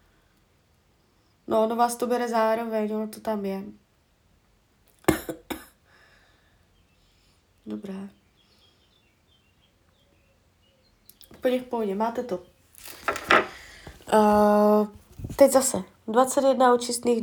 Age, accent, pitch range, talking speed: 20-39, native, 180-225 Hz, 75 wpm